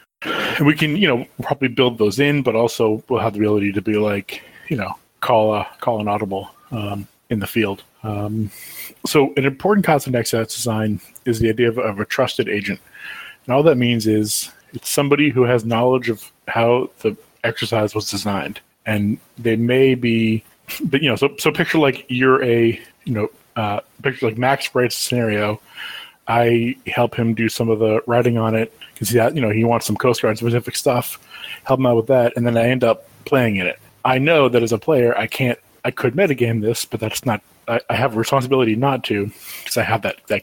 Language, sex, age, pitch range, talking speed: English, male, 30-49, 110-125 Hz, 210 wpm